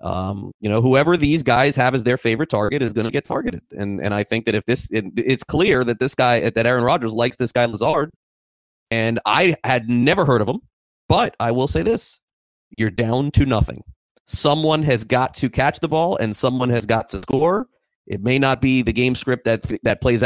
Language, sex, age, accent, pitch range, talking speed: English, male, 30-49, American, 105-130 Hz, 220 wpm